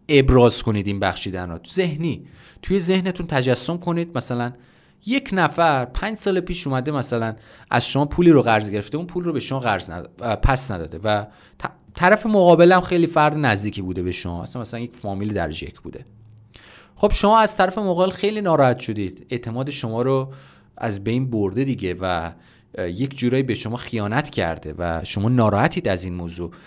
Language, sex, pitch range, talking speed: Persian, male, 95-150 Hz, 170 wpm